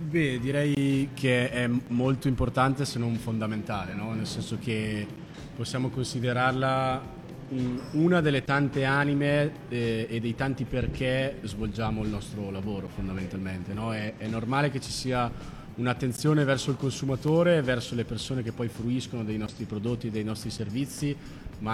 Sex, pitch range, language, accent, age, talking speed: male, 110-135 Hz, Italian, native, 30-49, 145 wpm